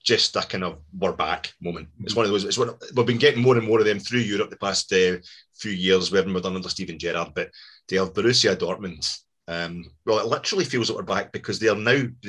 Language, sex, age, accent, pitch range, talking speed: English, male, 30-49, British, 95-120 Hz, 255 wpm